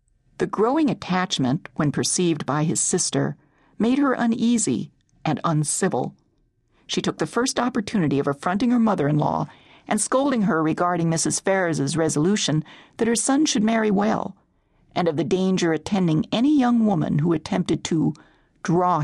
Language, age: English, 50-69